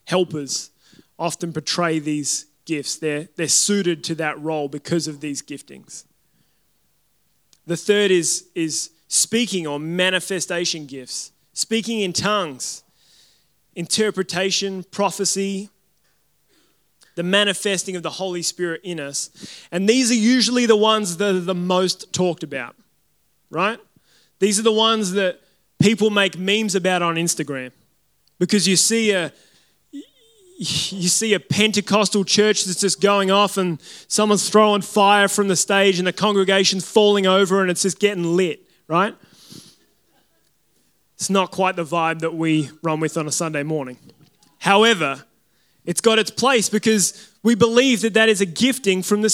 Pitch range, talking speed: 170-210 Hz, 145 wpm